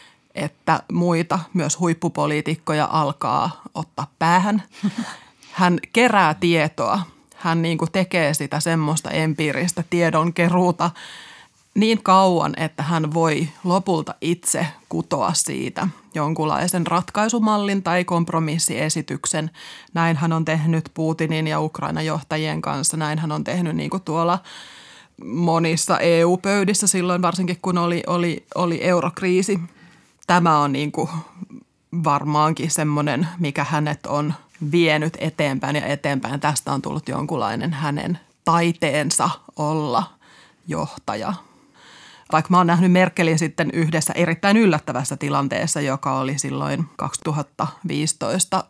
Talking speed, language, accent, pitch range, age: 105 wpm, Finnish, native, 155-180 Hz, 30-49